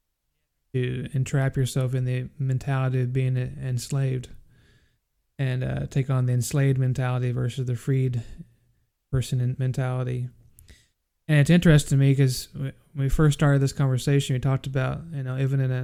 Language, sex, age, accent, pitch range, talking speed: English, male, 30-49, American, 125-135 Hz, 155 wpm